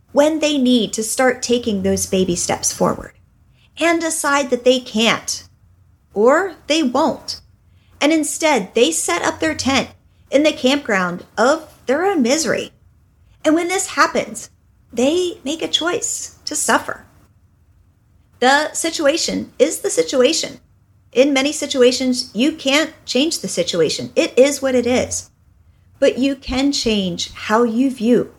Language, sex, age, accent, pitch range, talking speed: English, female, 40-59, American, 210-300 Hz, 140 wpm